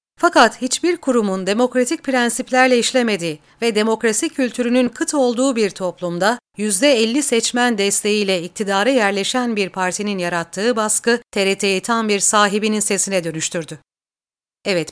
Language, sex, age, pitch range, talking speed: Turkish, female, 40-59, 185-245 Hz, 115 wpm